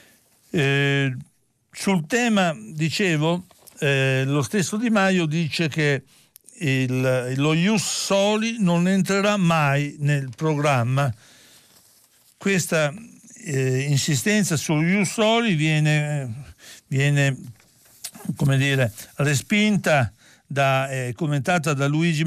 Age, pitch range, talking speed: 60-79, 140-195 Hz, 85 wpm